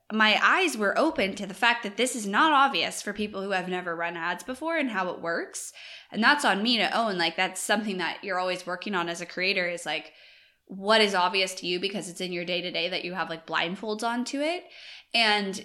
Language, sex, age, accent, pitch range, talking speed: English, female, 20-39, American, 175-230 Hz, 235 wpm